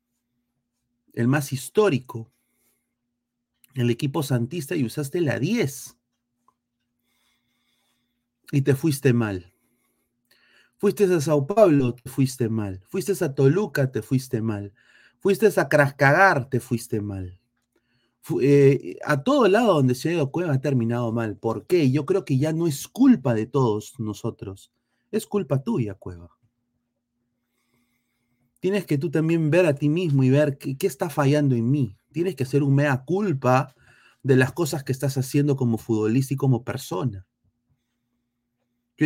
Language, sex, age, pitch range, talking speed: Spanish, male, 30-49, 120-145 Hz, 145 wpm